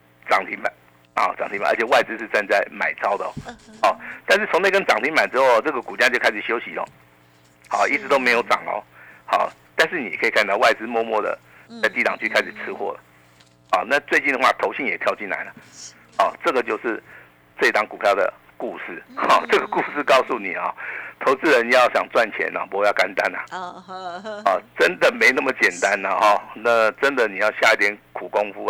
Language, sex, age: Chinese, male, 50-69